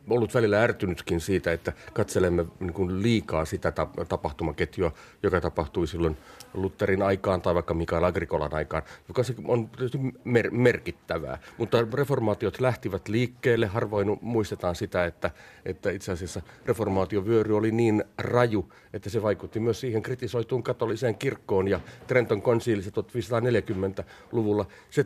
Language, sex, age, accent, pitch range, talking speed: Finnish, male, 40-59, native, 95-120 Hz, 120 wpm